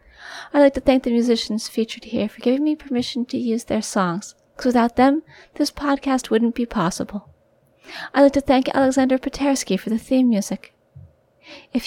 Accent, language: American, English